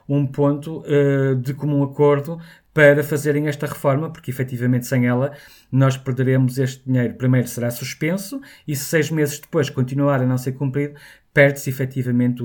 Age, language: 20-39, Portuguese